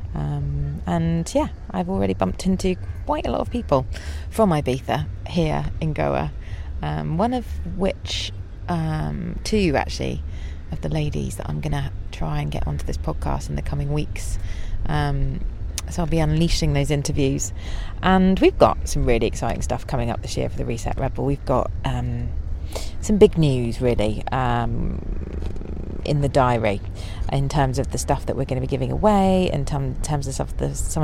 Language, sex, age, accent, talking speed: English, female, 30-49, British, 180 wpm